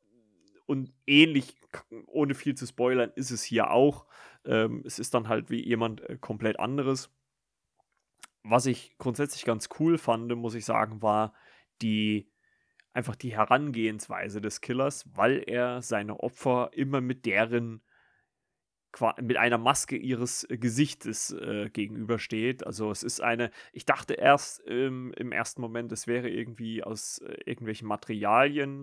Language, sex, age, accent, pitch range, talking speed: German, male, 30-49, German, 110-125 Hz, 140 wpm